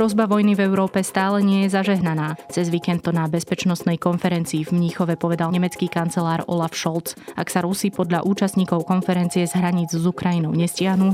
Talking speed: 170 wpm